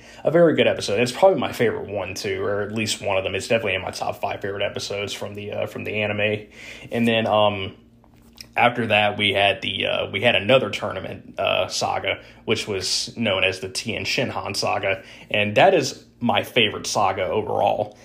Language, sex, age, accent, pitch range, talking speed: English, male, 20-39, American, 100-125 Hz, 200 wpm